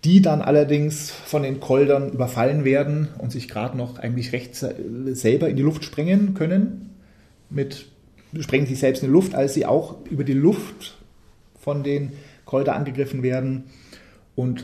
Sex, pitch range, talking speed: male, 110-145 Hz, 160 wpm